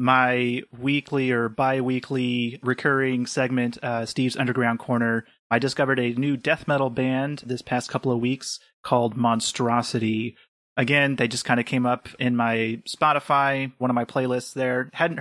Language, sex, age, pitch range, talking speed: English, male, 30-49, 125-145 Hz, 160 wpm